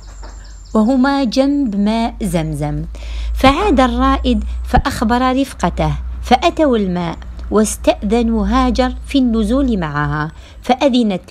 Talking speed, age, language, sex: 85 wpm, 50-69, Arabic, female